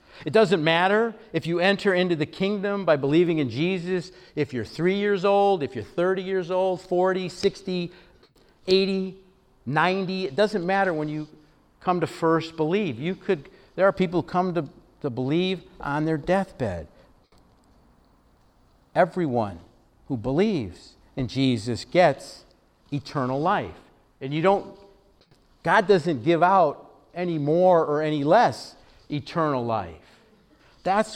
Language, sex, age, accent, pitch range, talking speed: English, male, 50-69, American, 145-190 Hz, 140 wpm